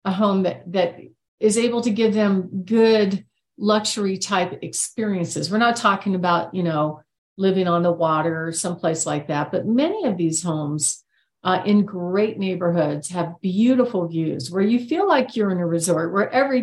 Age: 50-69